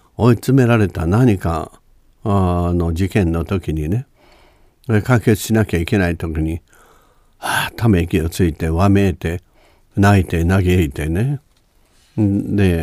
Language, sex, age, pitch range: Japanese, male, 60-79, 85-110 Hz